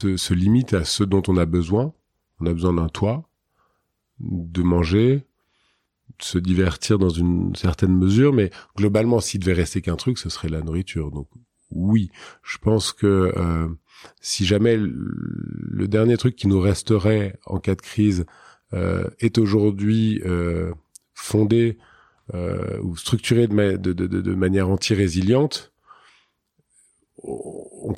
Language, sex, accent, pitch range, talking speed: French, male, French, 90-105 Hz, 145 wpm